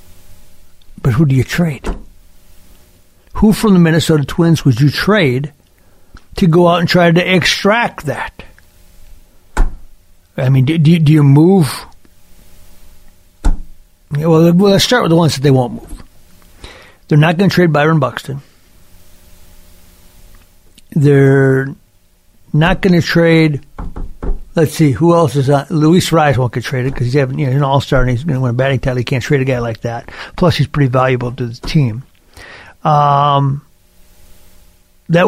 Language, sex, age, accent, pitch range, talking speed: English, male, 60-79, American, 115-170 Hz, 155 wpm